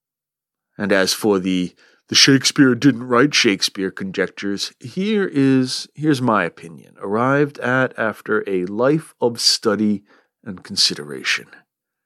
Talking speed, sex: 105 wpm, male